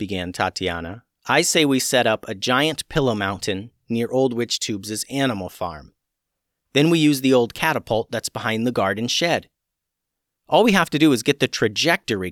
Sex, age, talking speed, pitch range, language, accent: male, 40-59, 180 wpm, 110-180 Hz, English, American